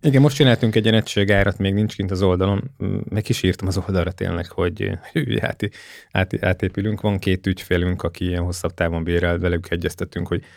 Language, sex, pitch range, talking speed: Hungarian, male, 90-110 Hz, 170 wpm